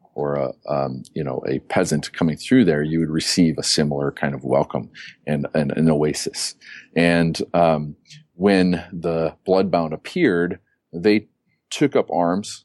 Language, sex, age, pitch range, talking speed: English, male, 40-59, 80-90 Hz, 155 wpm